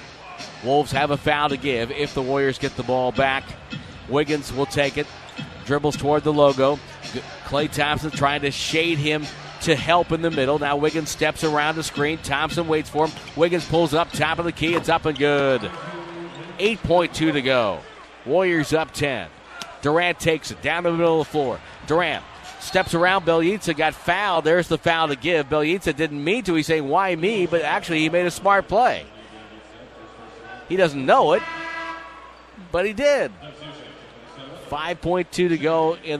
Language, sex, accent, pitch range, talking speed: English, male, American, 135-170 Hz, 175 wpm